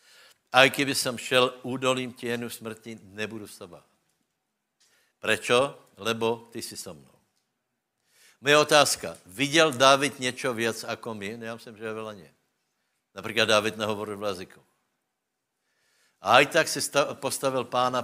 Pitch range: 105-130 Hz